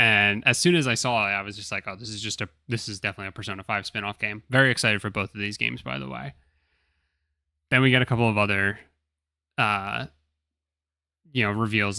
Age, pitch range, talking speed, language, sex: 20-39, 95-115 Hz, 210 wpm, English, male